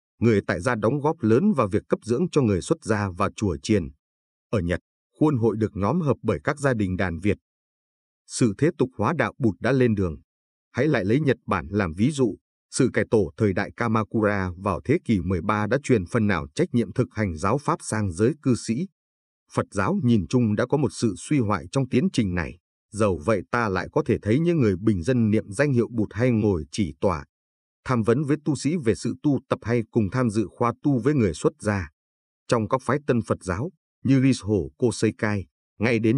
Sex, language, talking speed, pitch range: male, Vietnamese, 225 wpm, 95-125 Hz